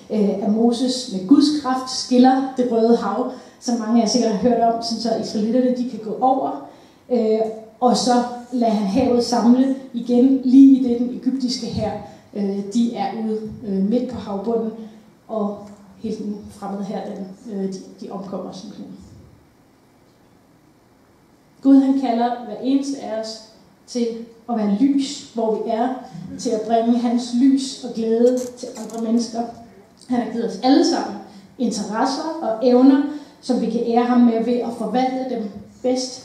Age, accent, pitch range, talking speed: 30-49, native, 220-255 Hz, 155 wpm